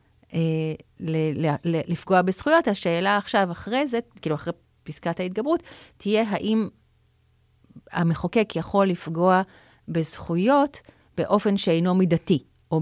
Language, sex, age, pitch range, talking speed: Hebrew, female, 40-59, 160-200 Hz, 100 wpm